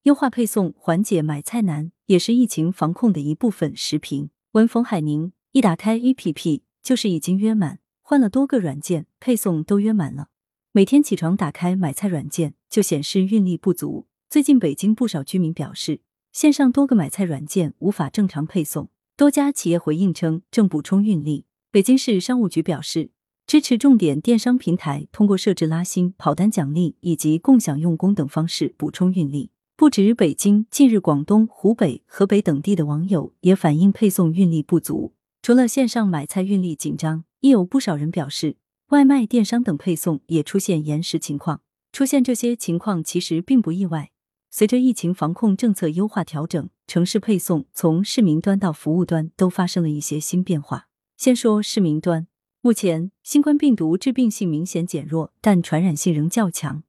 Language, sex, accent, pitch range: Chinese, female, native, 160-220 Hz